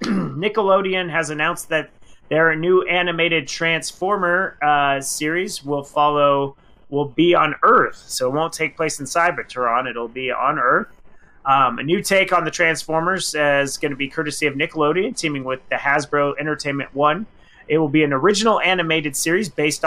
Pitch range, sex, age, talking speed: 145-180 Hz, male, 30-49, 165 wpm